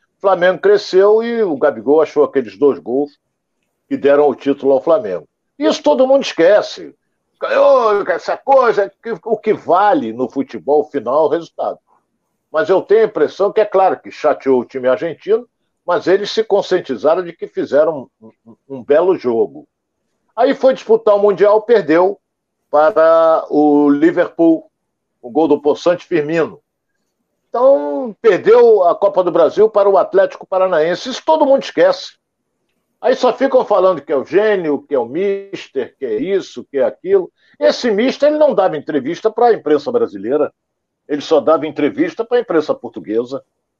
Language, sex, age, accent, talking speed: Portuguese, male, 60-79, Brazilian, 165 wpm